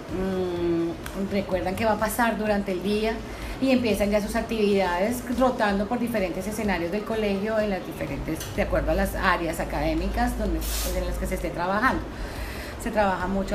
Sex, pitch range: female, 180-210 Hz